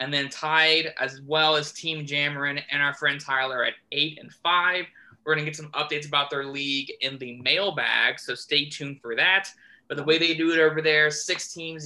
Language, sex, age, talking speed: English, male, 20-39, 220 wpm